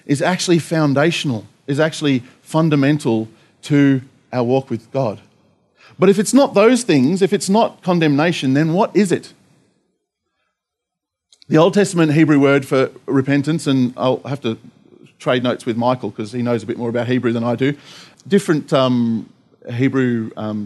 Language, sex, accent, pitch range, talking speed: English, male, Australian, 125-175 Hz, 160 wpm